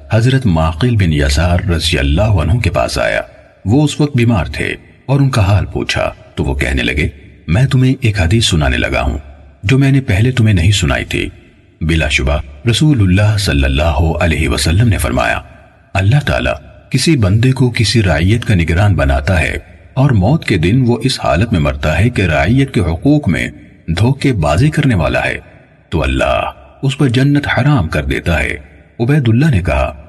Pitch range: 80-120 Hz